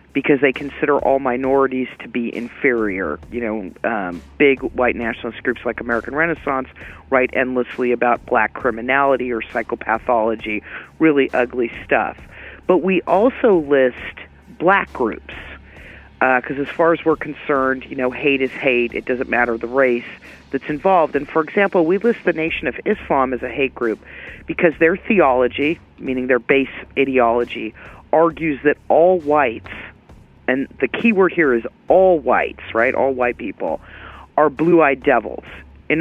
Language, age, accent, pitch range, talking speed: English, 40-59, American, 120-150 Hz, 155 wpm